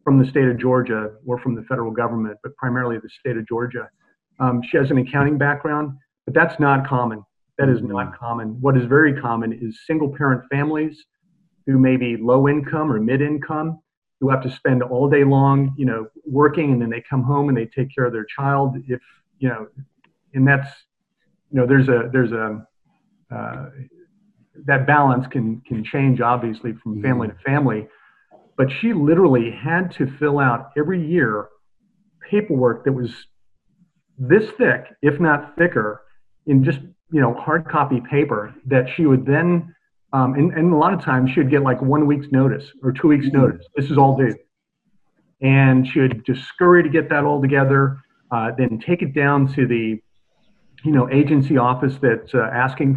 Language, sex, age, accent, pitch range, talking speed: English, male, 40-59, American, 125-150 Hz, 185 wpm